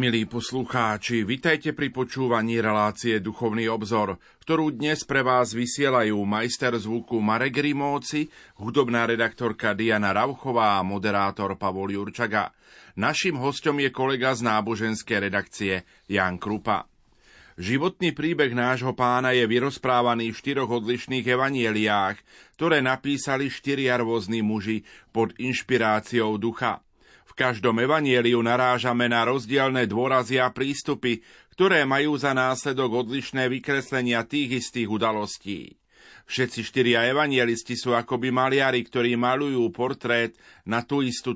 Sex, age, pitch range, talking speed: male, 40-59, 115-130 Hz, 120 wpm